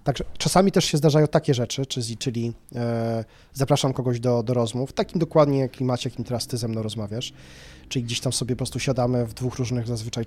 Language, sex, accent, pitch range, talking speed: Polish, male, native, 120-140 Hz, 200 wpm